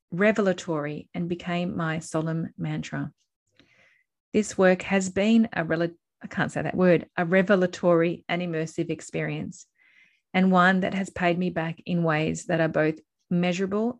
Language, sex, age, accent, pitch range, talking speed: English, female, 30-49, Australian, 165-190 Hz, 150 wpm